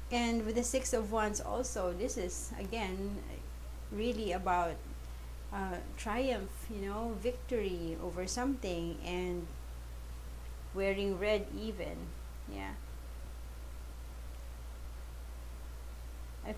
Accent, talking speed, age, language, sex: Filipino, 90 wpm, 30-49, English, female